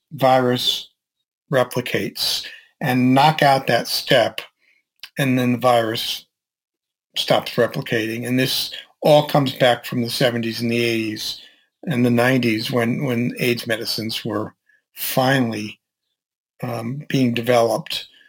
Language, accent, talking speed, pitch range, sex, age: English, American, 120 wpm, 120-150 Hz, male, 50-69